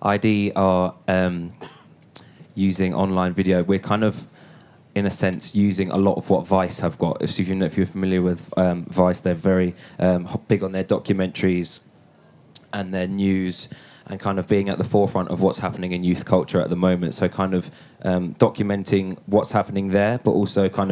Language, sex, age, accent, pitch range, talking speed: English, male, 20-39, British, 90-95 Hz, 180 wpm